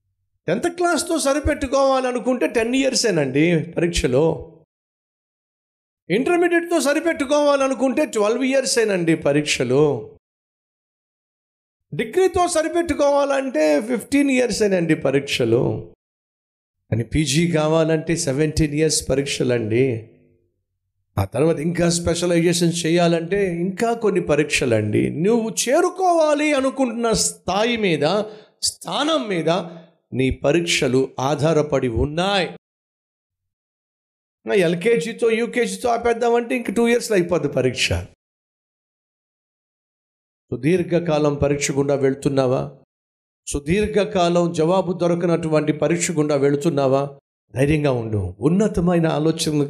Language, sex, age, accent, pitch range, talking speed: Telugu, male, 50-69, native, 130-220 Hz, 80 wpm